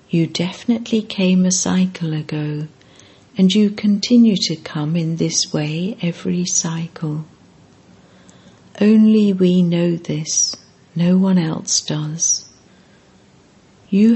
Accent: British